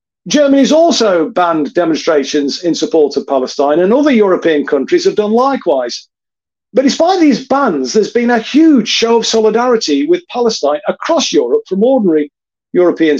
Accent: British